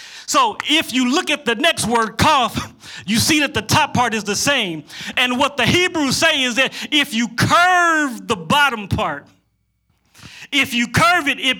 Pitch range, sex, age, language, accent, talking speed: 230-285 Hz, male, 40-59, English, American, 185 wpm